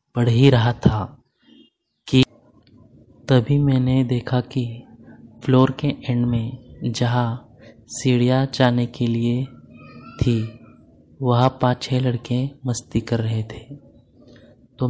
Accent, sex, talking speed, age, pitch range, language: native, male, 110 wpm, 20-39, 115-130 Hz, Hindi